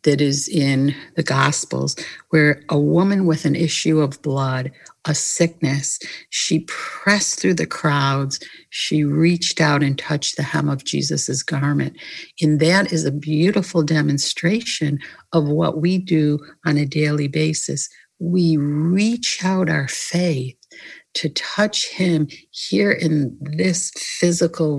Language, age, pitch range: English, 60-79, 150-180 Hz